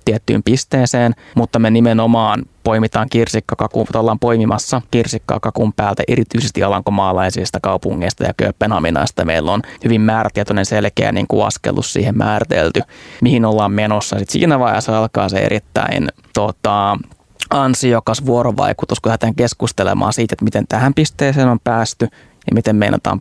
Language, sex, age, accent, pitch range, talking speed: Finnish, male, 20-39, native, 105-120 Hz, 130 wpm